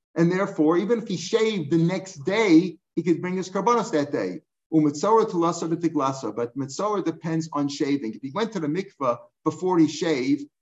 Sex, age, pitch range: male, 50-69, 150-190 Hz